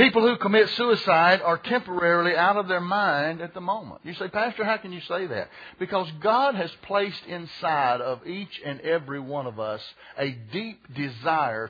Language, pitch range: English, 140-210 Hz